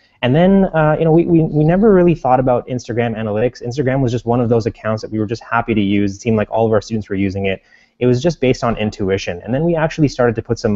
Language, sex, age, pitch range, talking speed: English, male, 20-39, 100-125 Hz, 290 wpm